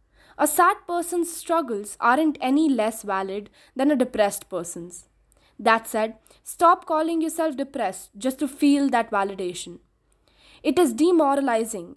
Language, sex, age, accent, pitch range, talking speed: English, female, 20-39, Indian, 220-310 Hz, 130 wpm